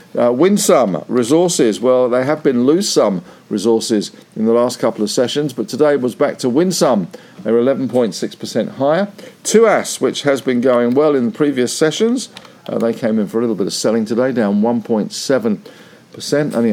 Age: 50-69